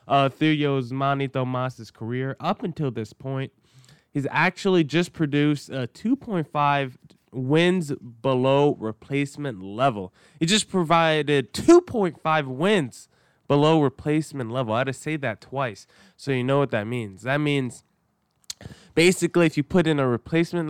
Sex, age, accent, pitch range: male, 20-39, American, 125-160 Hz